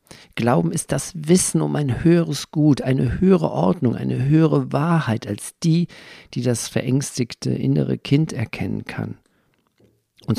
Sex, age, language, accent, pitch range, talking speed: male, 50-69, German, German, 110-160 Hz, 140 wpm